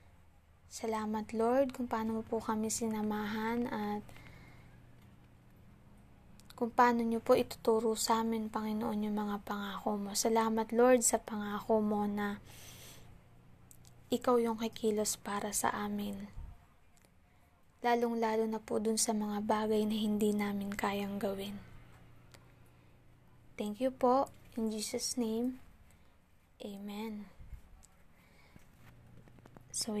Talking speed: 105 wpm